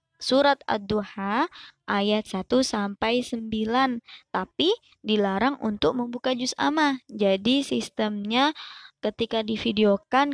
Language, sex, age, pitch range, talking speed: Indonesian, male, 20-39, 205-255 Hz, 95 wpm